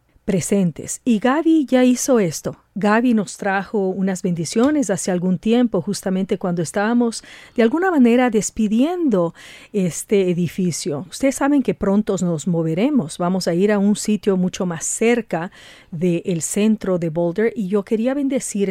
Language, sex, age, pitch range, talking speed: English, female, 40-59, 180-215 Hz, 145 wpm